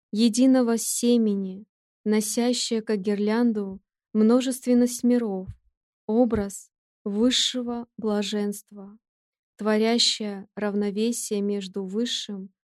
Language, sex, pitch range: Russian, female, 200-235 Hz